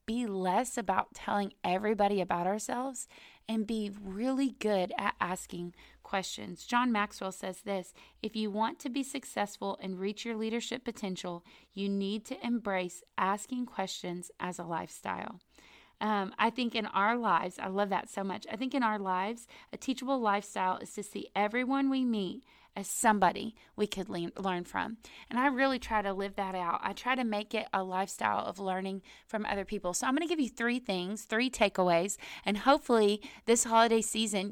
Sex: female